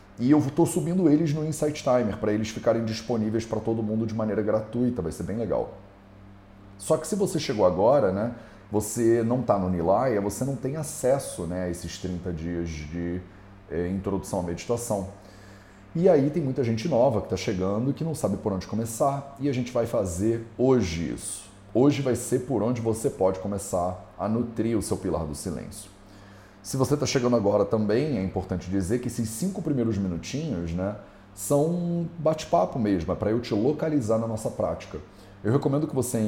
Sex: male